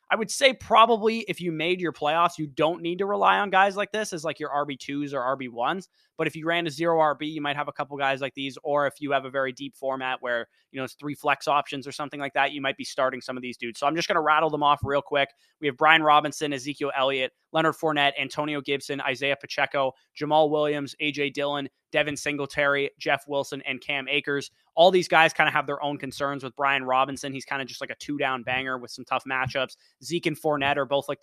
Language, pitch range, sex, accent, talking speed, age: English, 135-150 Hz, male, American, 250 wpm, 20-39